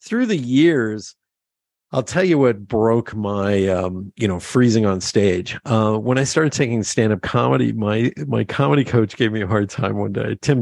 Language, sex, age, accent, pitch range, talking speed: English, male, 50-69, American, 105-135 Hz, 190 wpm